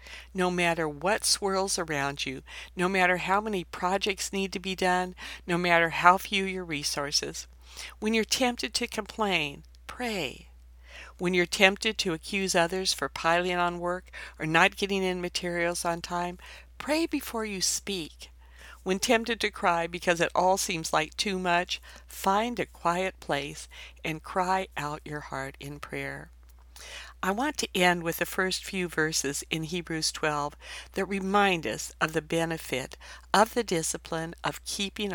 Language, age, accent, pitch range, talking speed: English, 60-79, American, 150-190 Hz, 160 wpm